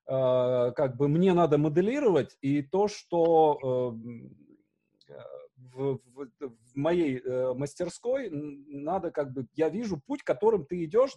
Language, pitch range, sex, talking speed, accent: Russian, 140-195 Hz, male, 135 wpm, native